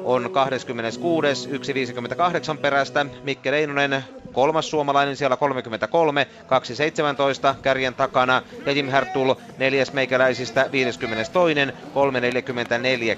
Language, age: Finnish, 30-49